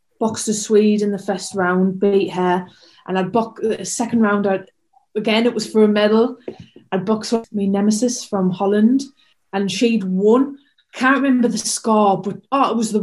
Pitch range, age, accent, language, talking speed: 190-220 Hz, 20-39, British, English, 185 wpm